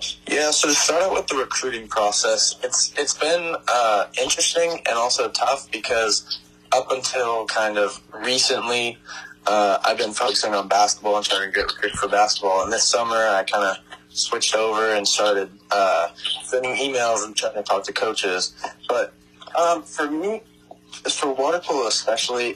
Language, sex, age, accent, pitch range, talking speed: English, male, 20-39, American, 100-130 Hz, 165 wpm